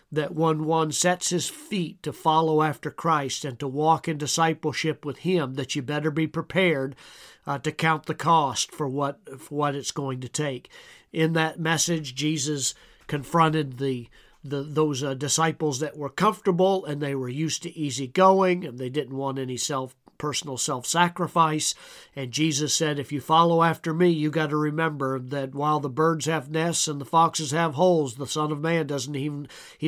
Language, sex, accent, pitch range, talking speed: English, male, American, 140-160 Hz, 185 wpm